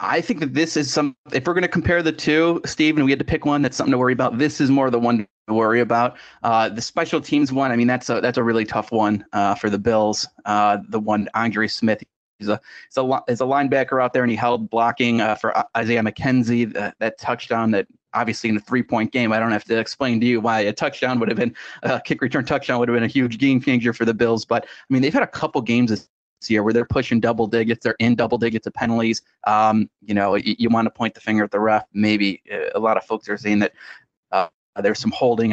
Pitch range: 110-130 Hz